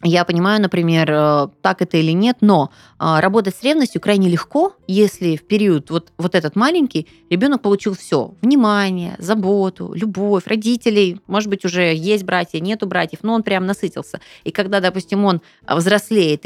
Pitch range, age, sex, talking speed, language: 165-210 Hz, 20-39, female, 155 wpm, Russian